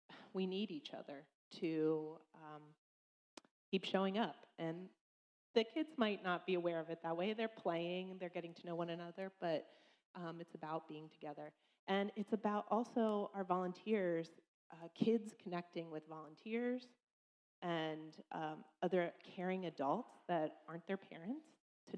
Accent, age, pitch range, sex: American, 30-49, 160-200 Hz, female